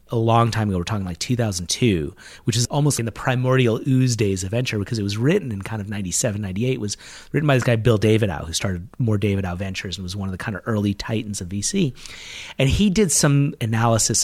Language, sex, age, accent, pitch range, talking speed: English, male, 30-49, American, 105-135 Hz, 230 wpm